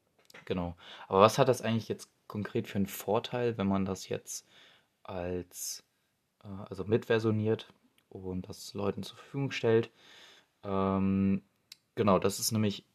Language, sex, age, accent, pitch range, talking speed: German, male, 20-39, German, 95-110 Hz, 140 wpm